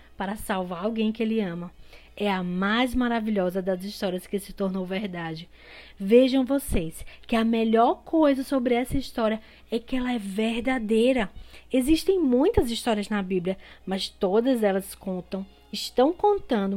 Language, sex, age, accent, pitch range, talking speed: Portuguese, female, 20-39, Brazilian, 195-250 Hz, 145 wpm